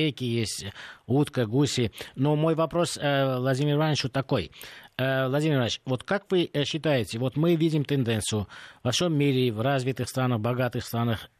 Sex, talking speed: male, 155 wpm